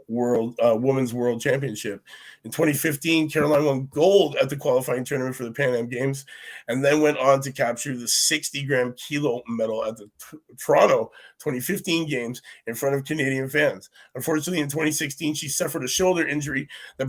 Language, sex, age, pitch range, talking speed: English, male, 30-49, 120-150 Hz, 175 wpm